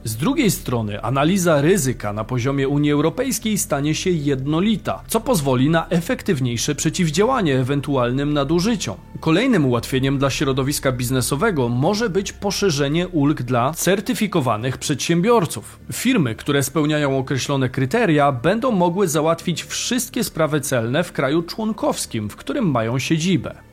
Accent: native